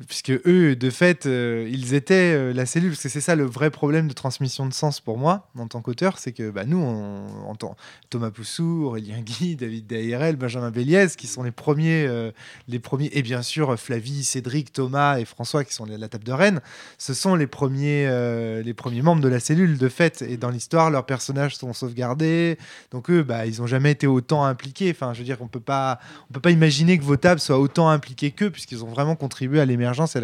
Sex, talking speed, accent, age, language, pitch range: male, 230 wpm, French, 20-39, French, 125-155 Hz